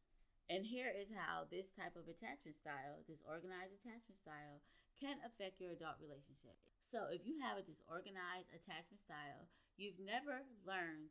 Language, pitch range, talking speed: English, 160-205 Hz, 155 wpm